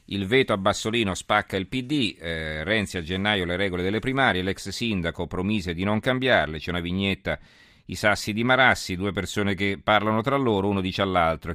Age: 40-59